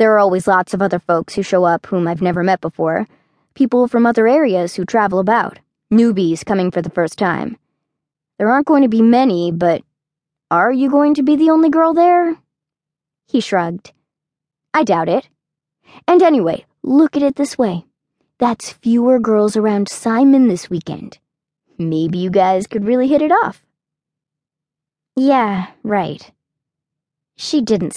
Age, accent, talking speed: 20-39, American, 160 wpm